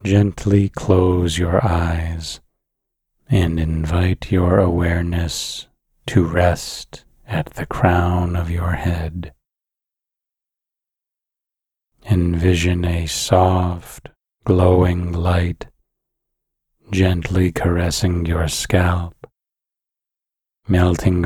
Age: 30-49